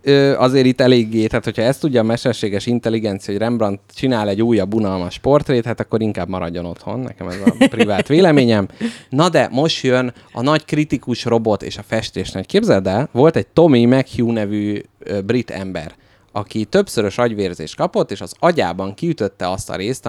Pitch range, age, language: 100-130 Hz, 30-49, Hungarian